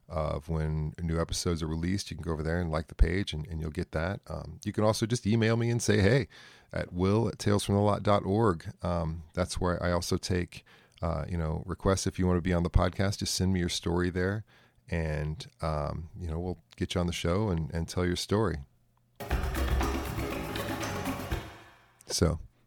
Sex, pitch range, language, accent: male, 80-95 Hz, English, American